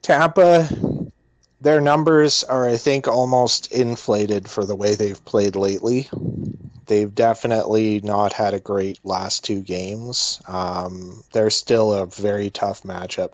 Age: 30-49